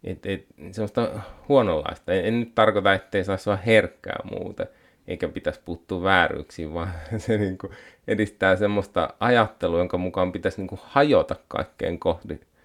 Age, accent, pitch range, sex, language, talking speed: 30-49, native, 90-115 Hz, male, Finnish, 140 wpm